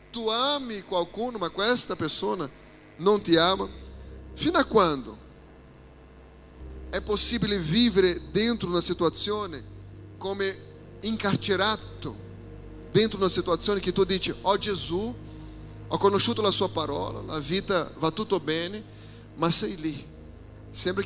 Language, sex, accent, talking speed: Italian, male, Brazilian, 125 wpm